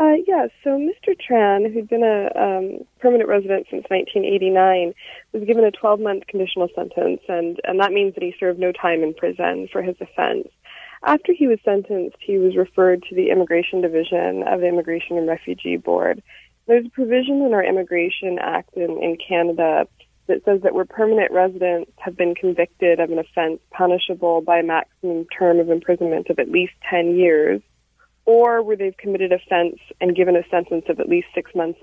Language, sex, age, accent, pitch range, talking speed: English, female, 20-39, American, 170-200 Hz, 185 wpm